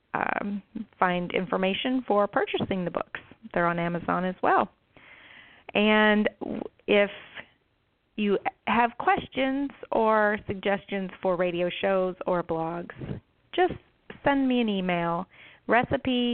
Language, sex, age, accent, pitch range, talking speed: English, female, 40-59, American, 180-220 Hz, 105 wpm